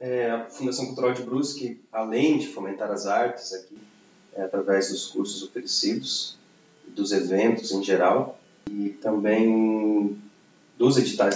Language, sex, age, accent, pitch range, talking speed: Portuguese, male, 30-49, Brazilian, 100-135 Hz, 130 wpm